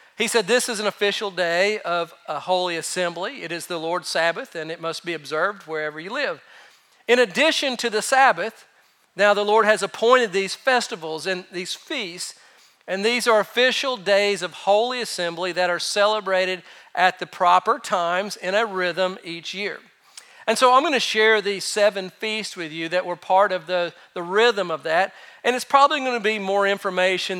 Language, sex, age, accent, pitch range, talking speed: English, male, 40-59, American, 185-225 Hz, 190 wpm